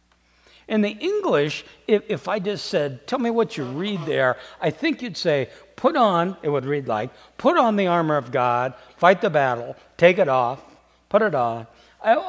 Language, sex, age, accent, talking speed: English, male, 60-79, American, 190 wpm